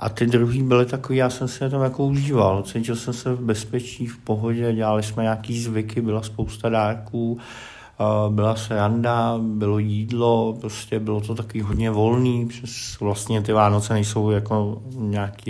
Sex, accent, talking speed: male, native, 165 wpm